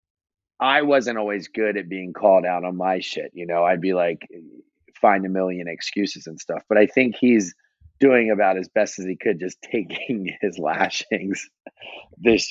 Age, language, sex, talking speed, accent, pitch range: 30-49, English, male, 180 wpm, American, 90-115 Hz